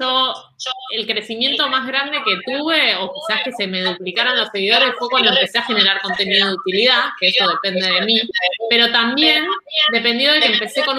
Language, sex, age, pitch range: Spanish, female, 20-39, 200-260 Hz